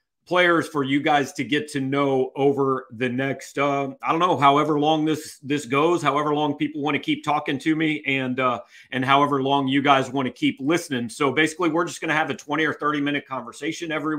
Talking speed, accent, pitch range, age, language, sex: 225 wpm, American, 125-150 Hz, 40-59, English, male